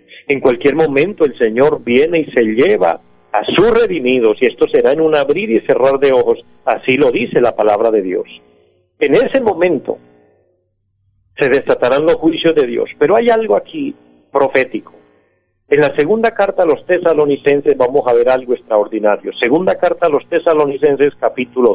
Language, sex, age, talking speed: Spanish, male, 50-69, 170 wpm